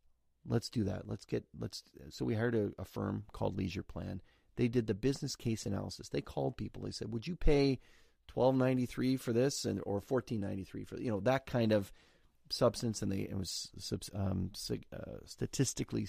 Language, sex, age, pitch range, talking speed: English, male, 30-49, 95-120 Hz, 180 wpm